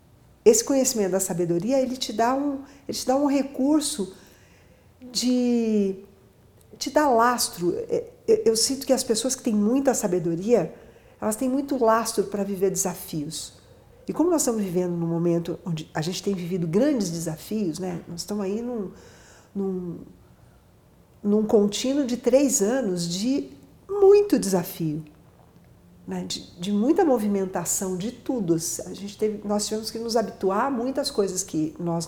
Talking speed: 150 wpm